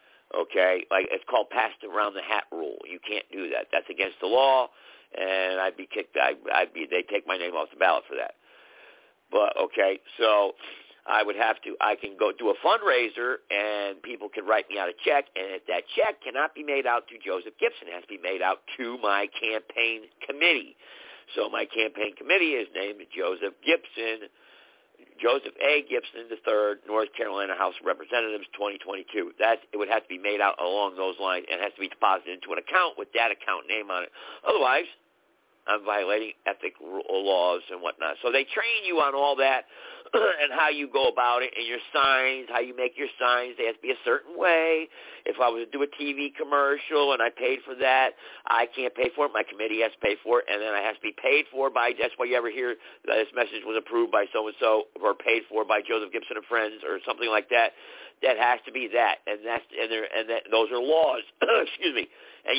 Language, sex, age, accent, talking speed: English, male, 50-69, American, 220 wpm